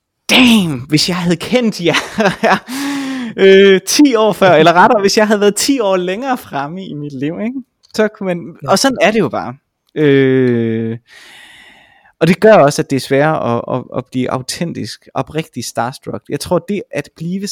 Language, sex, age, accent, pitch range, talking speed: Danish, male, 20-39, native, 115-170 Hz, 190 wpm